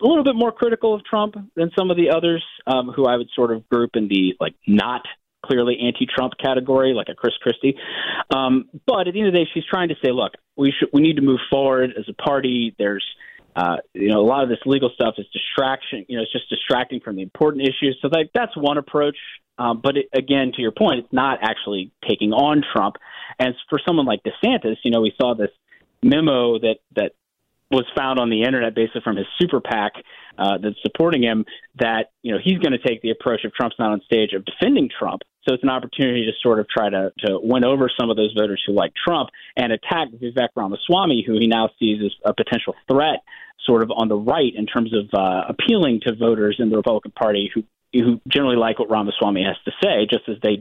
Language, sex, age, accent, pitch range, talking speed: English, male, 30-49, American, 115-145 Hz, 230 wpm